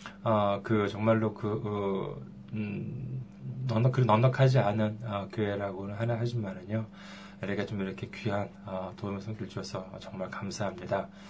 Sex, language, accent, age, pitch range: male, Korean, native, 20-39, 100-120 Hz